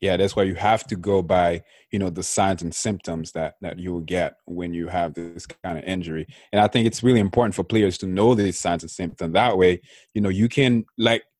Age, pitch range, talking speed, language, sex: 20-39, 95-120 Hz, 245 wpm, English, male